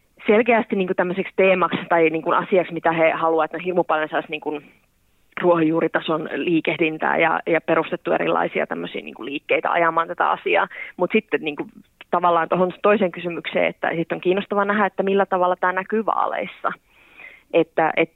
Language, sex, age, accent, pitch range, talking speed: Finnish, female, 20-39, native, 155-175 Hz, 150 wpm